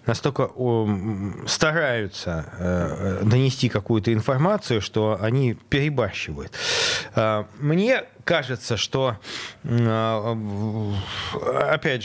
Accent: native